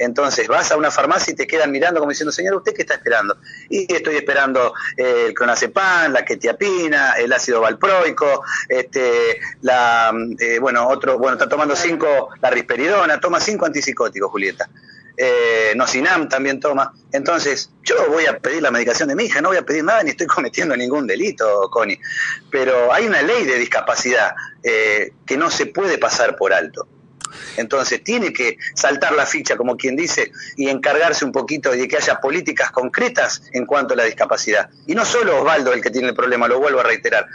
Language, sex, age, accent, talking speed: Spanish, male, 40-59, Argentinian, 185 wpm